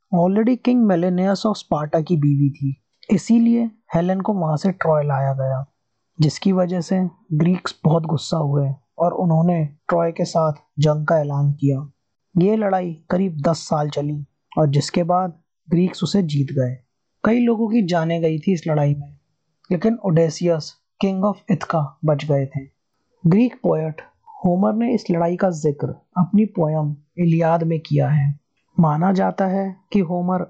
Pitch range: 150-185 Hz